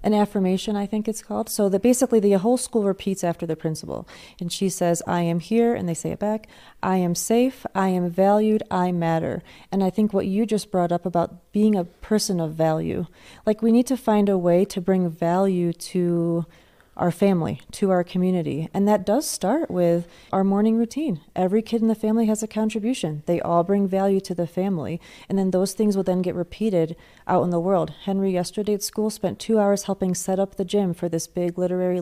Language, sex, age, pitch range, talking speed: English, female, 30-49, 170-205 Hz, 215 wpm